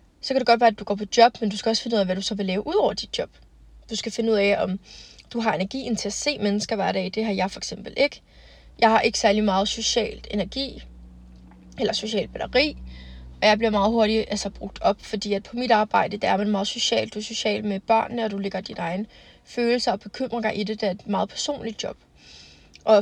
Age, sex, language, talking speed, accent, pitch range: 20-39, female, Danish, 255 wpm, native, 200-225 Hz